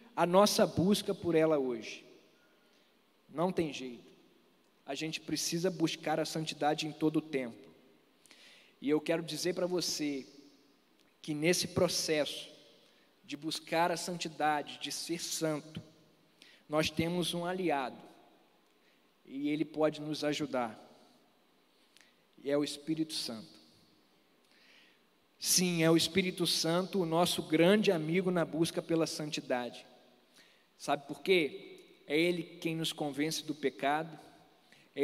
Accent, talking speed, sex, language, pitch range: Brazilian, 125 wpm, male, Portuguese, 155-200 Hz